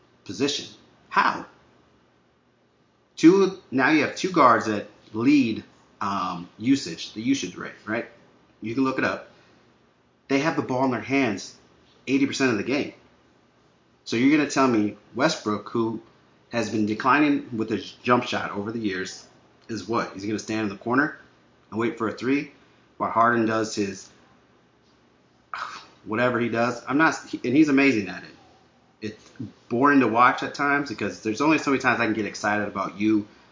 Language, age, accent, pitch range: English, 30-49, American, 105-135 Hz